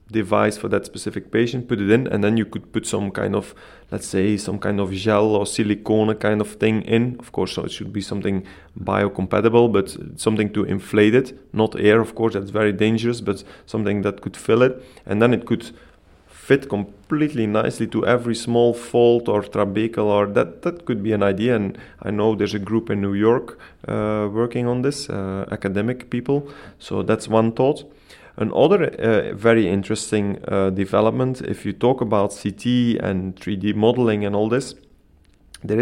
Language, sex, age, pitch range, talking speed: Danish, male, 30-49, 100-120 Hz, 190 wpm